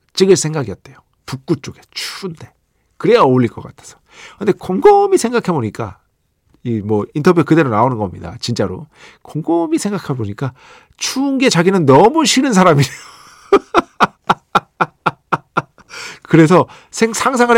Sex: male